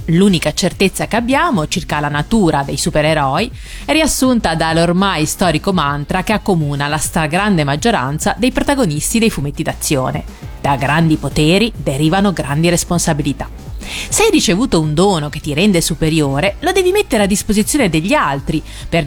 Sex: female